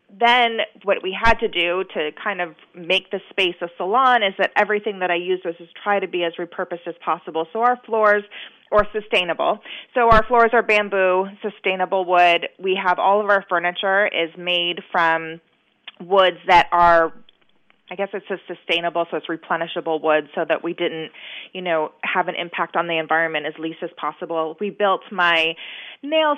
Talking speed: 185 wpm